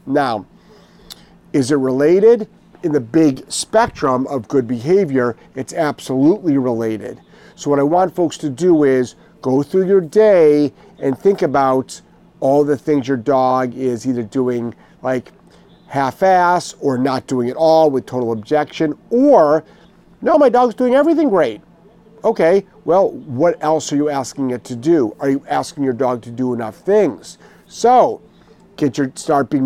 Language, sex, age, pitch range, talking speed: English, male, 50-69, 130-175 Hz, 160 wpm